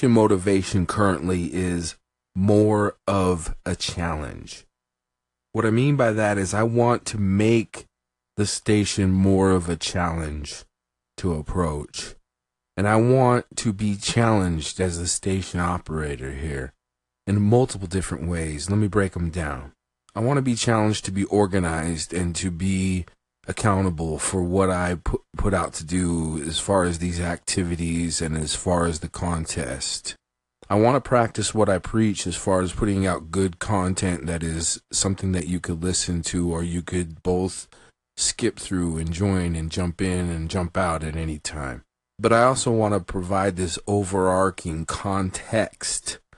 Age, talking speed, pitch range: 30-49, 160 wpm, 80-100 Hz